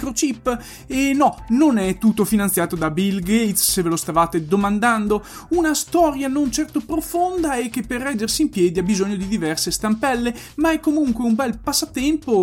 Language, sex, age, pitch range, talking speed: Italian, male, 30-49, 195-270 Hz, 175 wpm